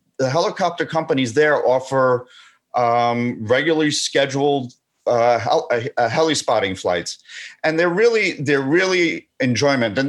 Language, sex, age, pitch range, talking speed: English, male, 30-49, 120-155 Hz, 120 wpm